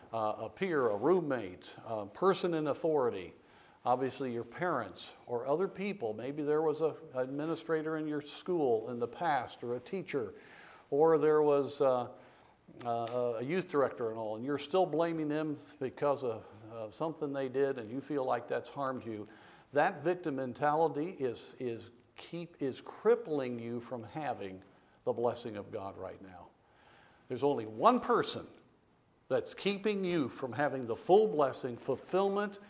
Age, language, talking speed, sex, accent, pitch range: 50-69, English, 160 wpm, male, American, 125-165 Hz